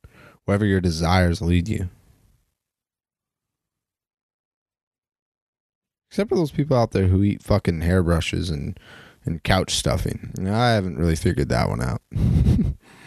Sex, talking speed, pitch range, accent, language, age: male, 120 wpm, 95-130 Hz, American, English, 20-39